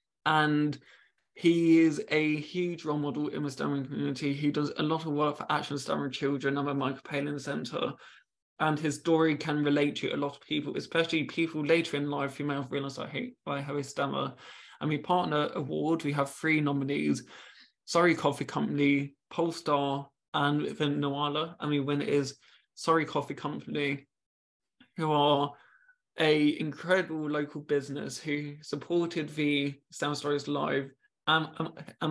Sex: male